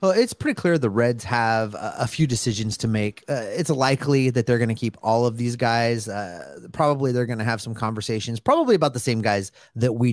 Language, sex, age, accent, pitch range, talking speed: English, male, 30-49, American, 115-155 Hz, 235 wpm